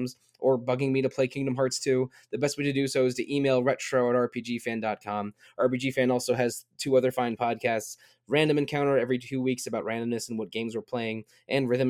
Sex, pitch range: male, 110-130 Hz